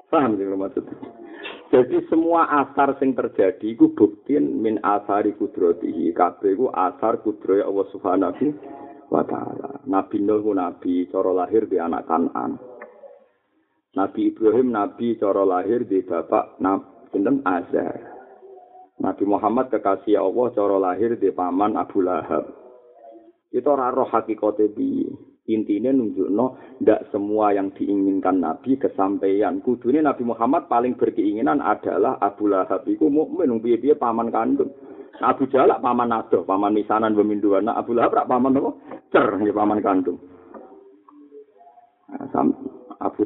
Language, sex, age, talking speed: Indonesian, male, 50-69, 120 wpm